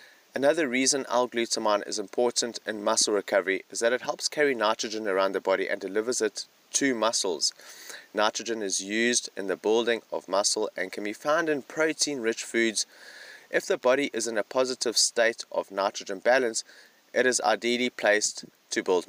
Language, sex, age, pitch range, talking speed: English, male, 30-49, 105-130 Hz, 175 wpm